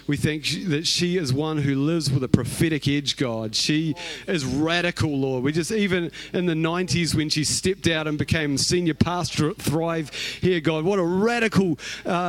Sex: male